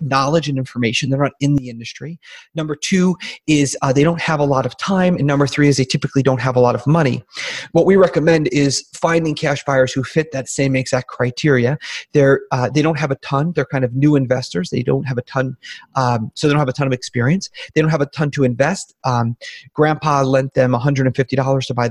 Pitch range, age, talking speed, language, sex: 130-160 Hz, 30-49, 230 wpm, English, male